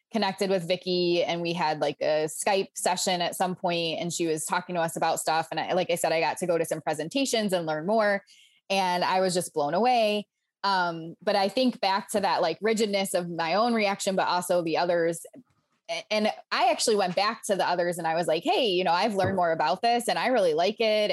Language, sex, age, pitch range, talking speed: English, female, 20-39, 170-215 Hz, 240 wpm